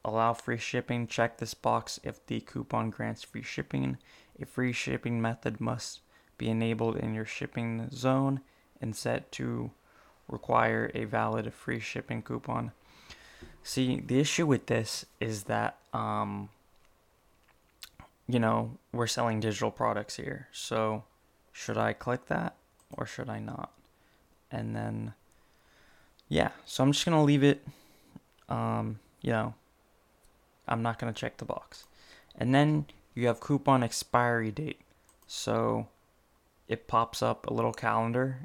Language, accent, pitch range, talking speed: English, American, 110-125 Hz, 140 wpm